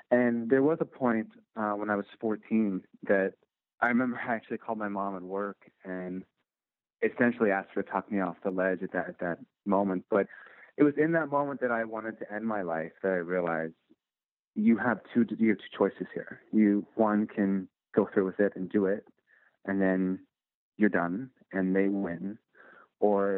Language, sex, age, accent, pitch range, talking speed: English, male, 30-49, American, 95-120 Hz, 190 wpm